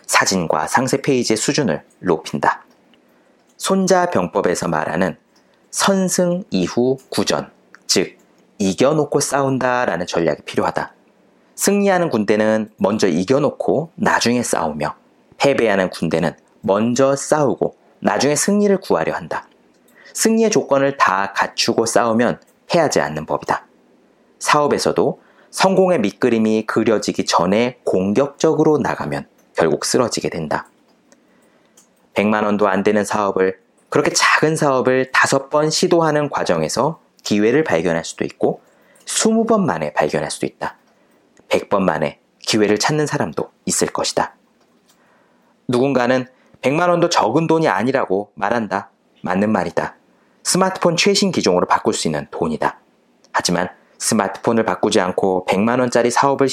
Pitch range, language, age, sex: 115-180 Hz, Korean, 30-49, male